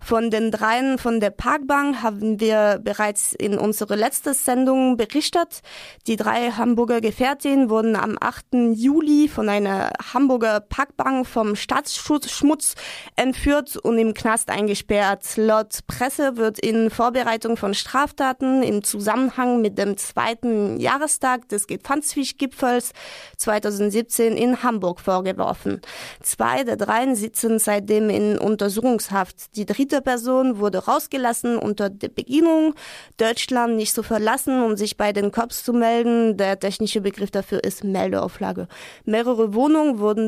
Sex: female